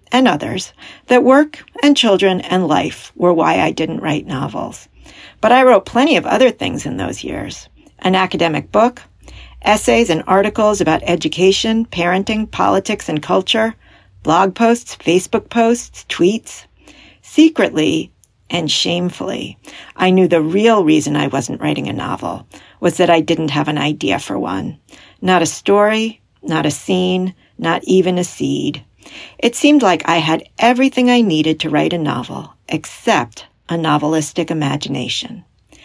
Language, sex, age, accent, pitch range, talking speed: English, female, 50-69, American, 165-230 Hz, 150 wpm